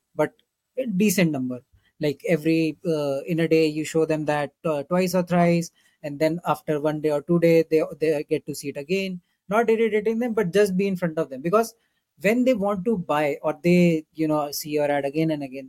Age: 20-39